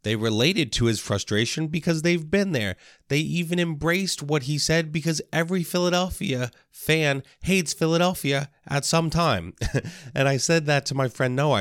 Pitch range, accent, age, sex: 110-150 Hz, American, 30-49, male